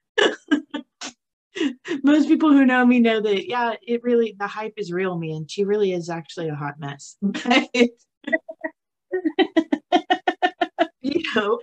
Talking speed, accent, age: 125 wpm, American, 30-49